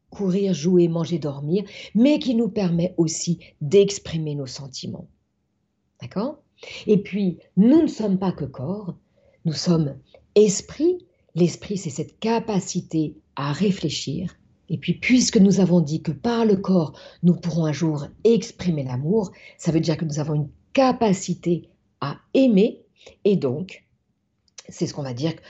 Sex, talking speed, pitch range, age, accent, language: female, 150 wpm, 155-210 Hz, 50-69, French, French